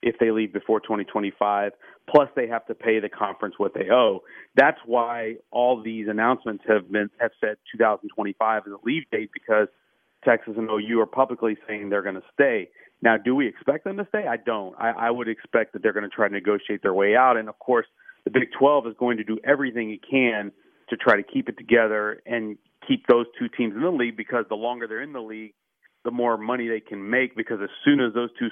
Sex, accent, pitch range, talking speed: male, American, 105-120 Hz, 230 wpm